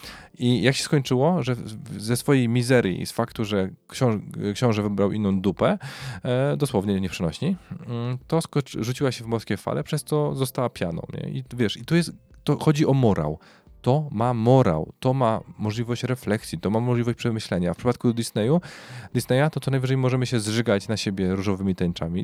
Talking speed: 180 wpm